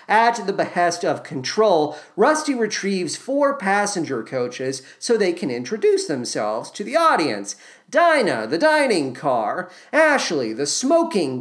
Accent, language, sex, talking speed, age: American, English, male, 130 wpm, 40-59